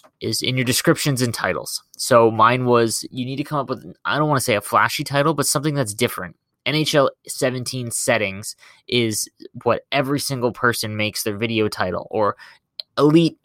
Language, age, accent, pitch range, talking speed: English, 20-39, American, 110-135 Hz, 185 wpm